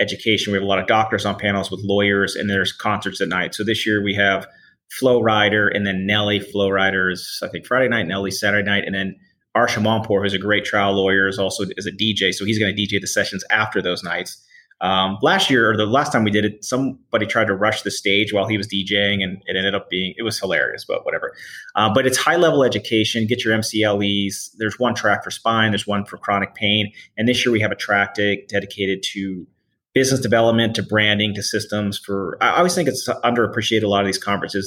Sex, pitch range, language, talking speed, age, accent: male, 95-110 Hz, English, 230 wpm, 30-49, American